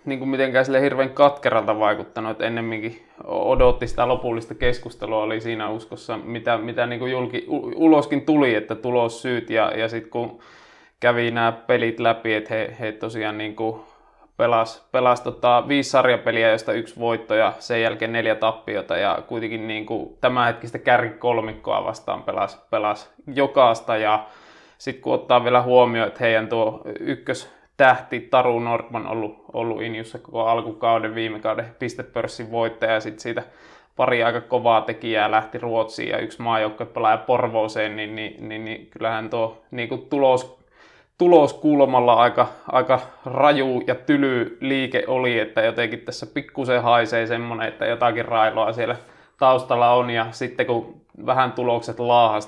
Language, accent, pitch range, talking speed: Finnish, native, 110-125 Hz, 150 wpm